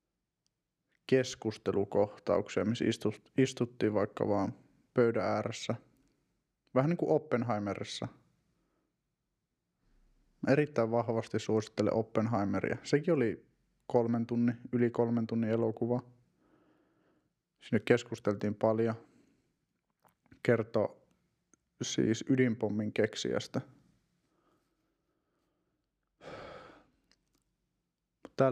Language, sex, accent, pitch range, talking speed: Finnish, male, native, 110-130 Hz, 65 wpm